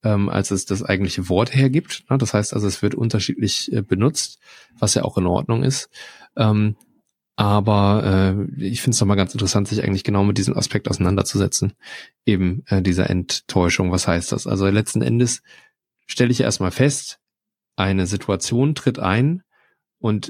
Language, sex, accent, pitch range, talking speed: German, male, German, 95-115 Hz, 165 wpm